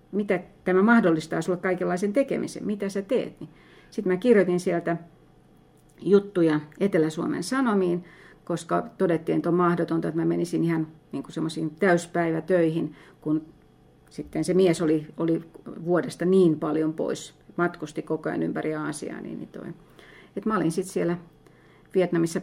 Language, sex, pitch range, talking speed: Finnish, female, 160-185 Hz, 140 wpm